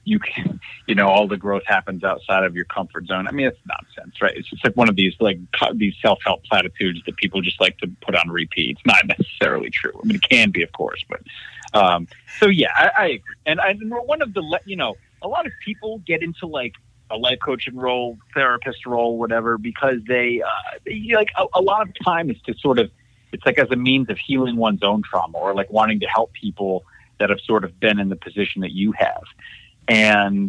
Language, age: English, 30-49